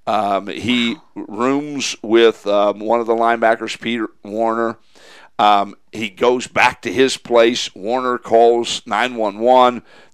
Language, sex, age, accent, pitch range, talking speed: English, male, 50-69, American, 110-135 Hz, 125 wpm